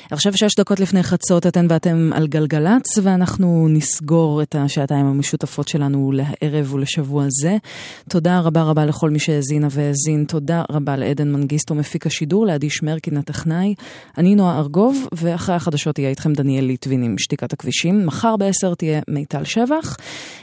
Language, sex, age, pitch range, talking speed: Hebrew, female, 30-49, 140-170 Hz, 150 wpm